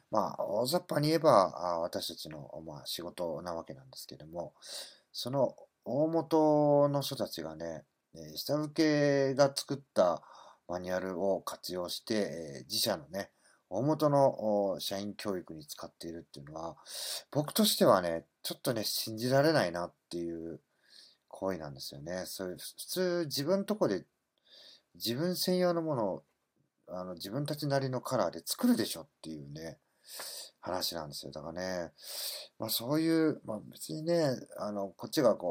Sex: male